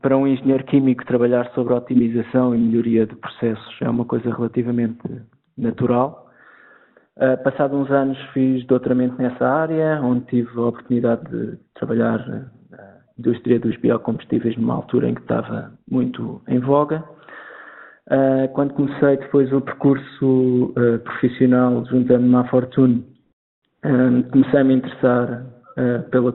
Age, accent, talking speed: 20-39, Portuguese, 130 wpm